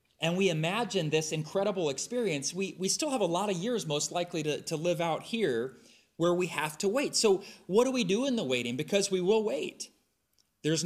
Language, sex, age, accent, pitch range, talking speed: English, male, 30-49, American, 135-190 Hz, 215 wpm